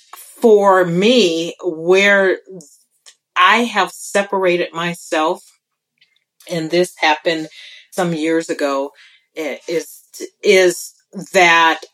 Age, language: 40-59, English